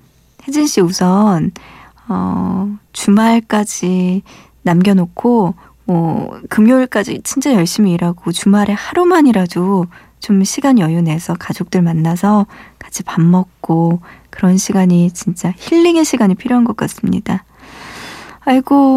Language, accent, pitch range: Korean, native, 180-235 Hz